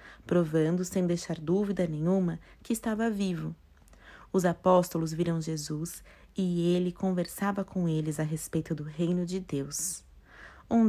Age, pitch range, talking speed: 30-49, 165-195 Hz, 130 wpm